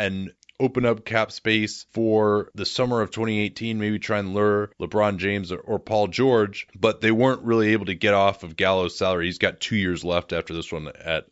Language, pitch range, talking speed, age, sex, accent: English, 100-125 Hz, 210 wpm, 20-39, male, American